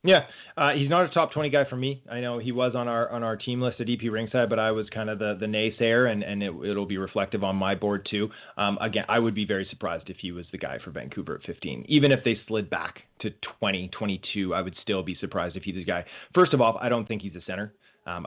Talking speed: 275 wpm